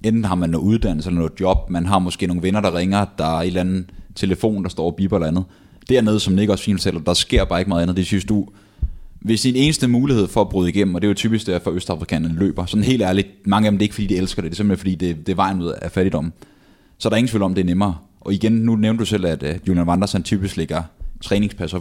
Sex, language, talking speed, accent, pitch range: male, Danish, 280 wpm, native, 90-110 Hz